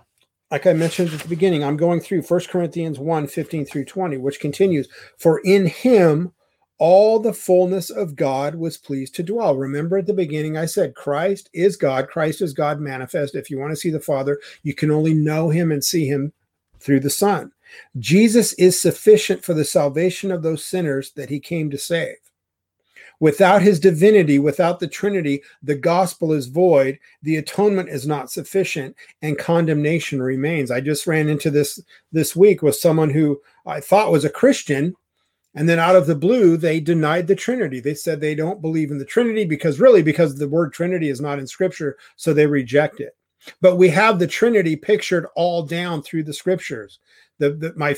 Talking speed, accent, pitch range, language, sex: 190 wpm, American, 150-185 Hz, English, male